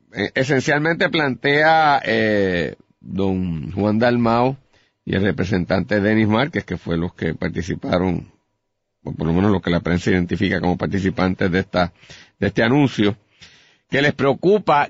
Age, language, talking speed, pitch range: 50-69, Spanish, 140 wpm, 100-130 Hz